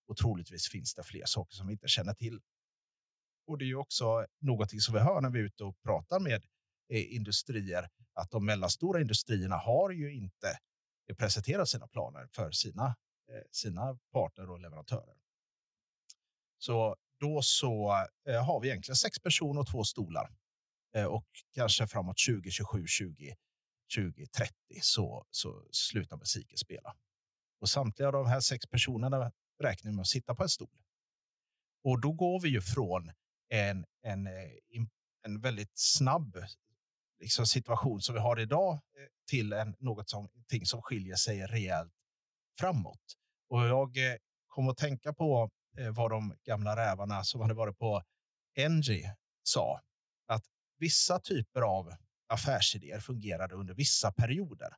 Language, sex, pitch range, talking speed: Swedish, male, 100-130 Hz, 145 wpm